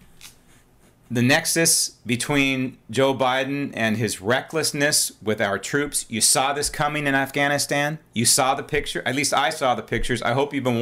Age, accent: 40-59, American